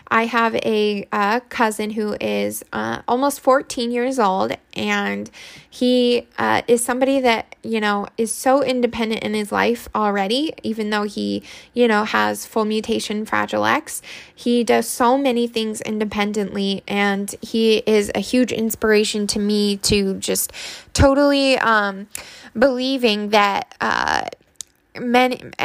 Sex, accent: female, American